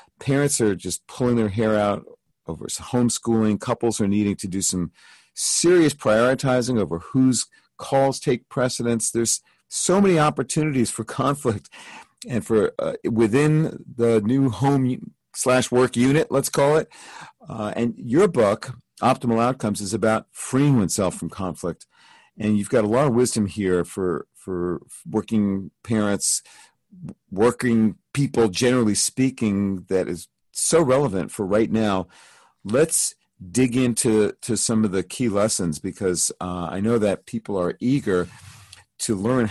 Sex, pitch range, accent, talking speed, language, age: male, 100-130 Hz, American, 145 wpm, English, 50-69